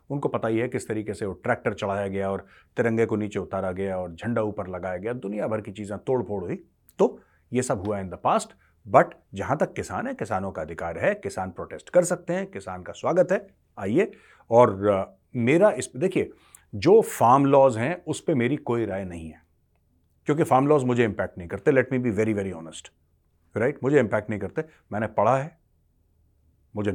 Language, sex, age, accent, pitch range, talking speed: Hindi, male, 30-49, native, 95-135 Hz, 205 wpm